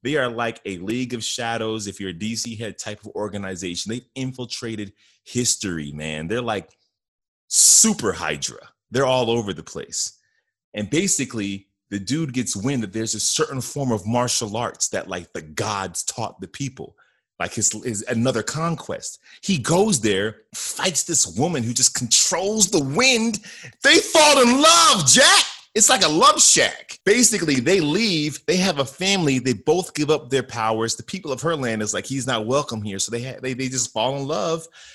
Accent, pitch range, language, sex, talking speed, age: American, 110-160 Hz, English, male, 185 wpm, 30-49